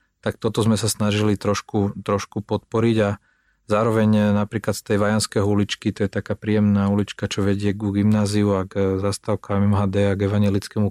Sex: male